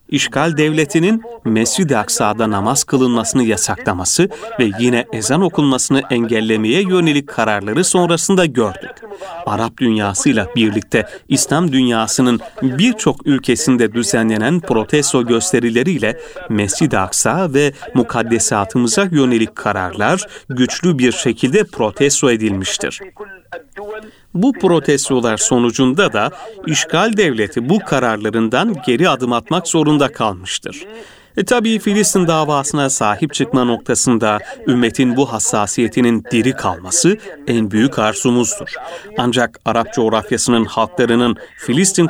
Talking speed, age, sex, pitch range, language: 100 wpm, 40-59, male, 115-160 Hz, Turkish